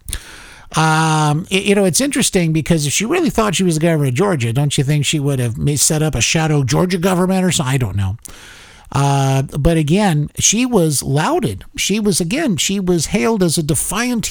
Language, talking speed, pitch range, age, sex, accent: English, 200 wpm, 135-180 Hz, 50-69, male, American